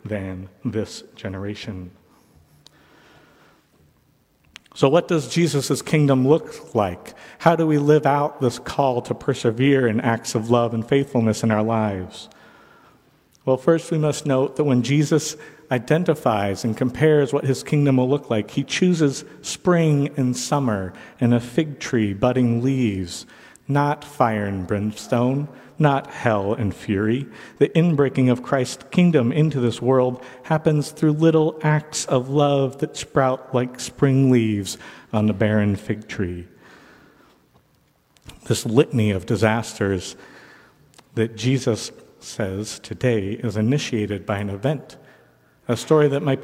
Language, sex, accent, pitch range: English, male, American, 110-145 Hz